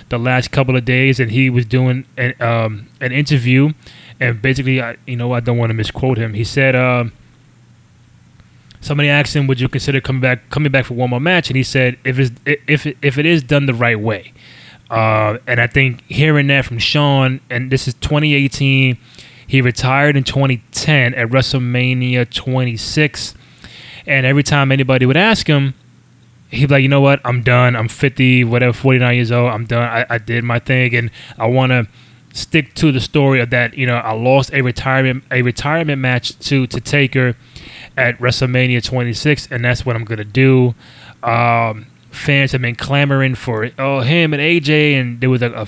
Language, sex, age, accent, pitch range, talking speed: English, male, 20-39, American, 120-140 Hz, 195 wpm